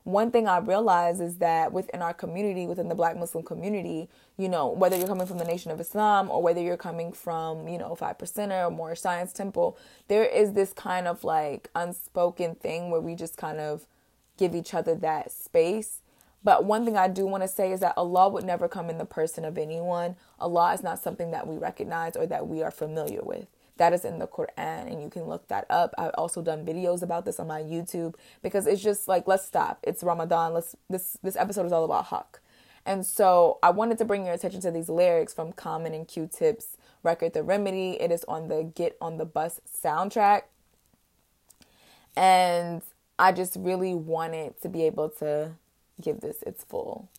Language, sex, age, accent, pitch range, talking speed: English, female, 20-39, American, 165-195 Hz, 205 wpm